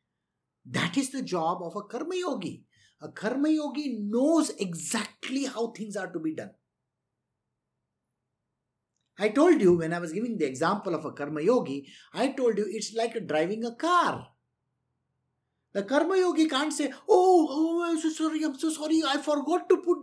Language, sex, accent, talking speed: English, male, Indian, 170 wpm